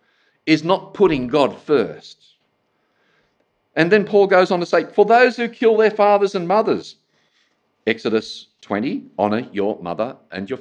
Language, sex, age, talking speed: English, male, 50-69, 155 wpm